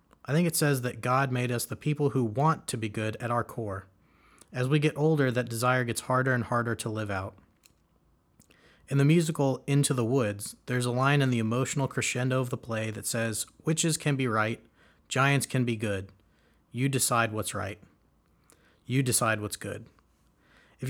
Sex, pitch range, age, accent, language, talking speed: male, 115-140 Hz, 30-49, American, English, 190 wpm